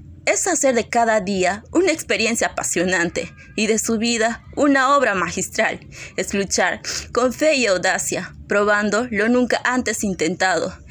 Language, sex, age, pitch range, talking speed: Spanish, female, 20-39, 180-240 Hz, 145 wpm